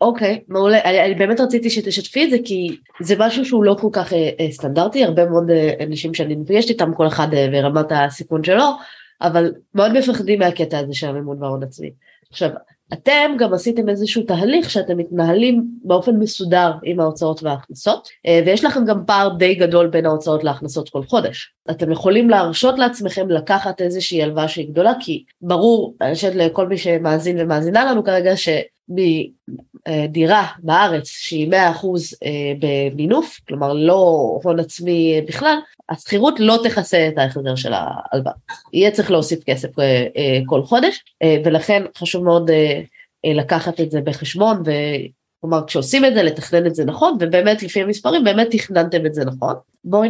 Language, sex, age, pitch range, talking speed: Hebrew, female, 20-39, 155-210 Hz, 160 wpm